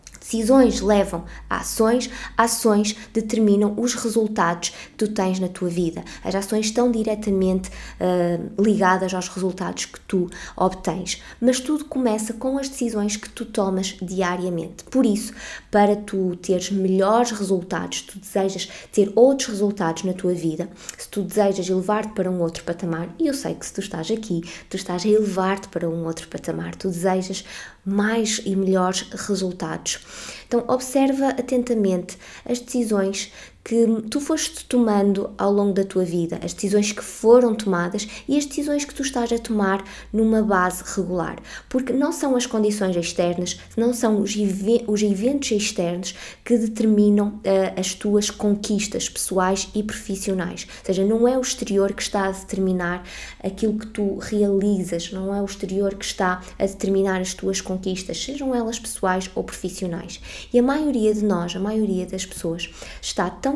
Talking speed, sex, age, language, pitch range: 160 wpm, female, 20-39, Portuguese, 185-225 Hz